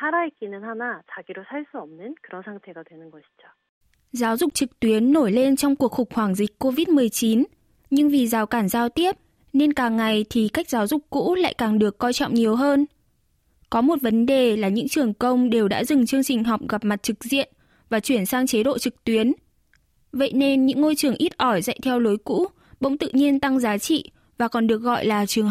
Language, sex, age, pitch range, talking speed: Vietnamese, female, 10-29, 225-290 Hz, 195 wpm